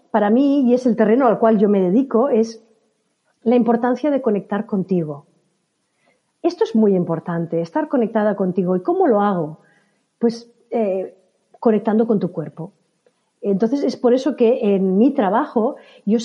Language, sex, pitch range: Spanish, female, 190-260 Hz